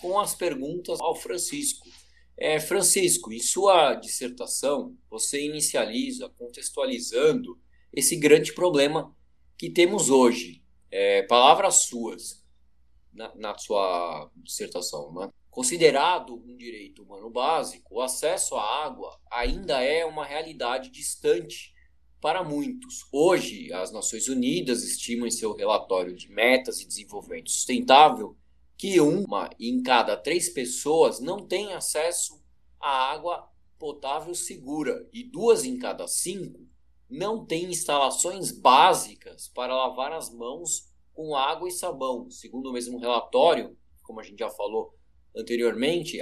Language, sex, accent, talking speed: Portuguese, male, Brazilian, 120 wpm